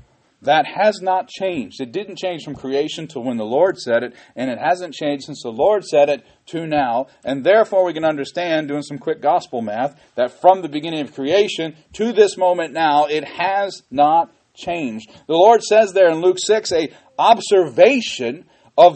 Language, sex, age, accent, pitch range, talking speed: English, male, 40-59, American, 125-185 Hz, 190 wpm